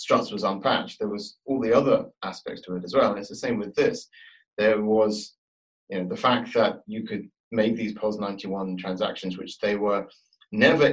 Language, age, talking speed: English, 30-49, 205 wpm